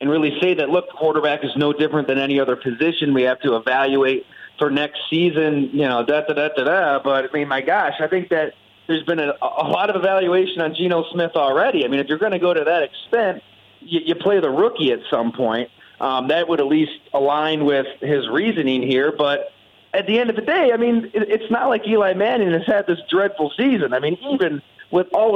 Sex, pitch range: male, 145-185 Hz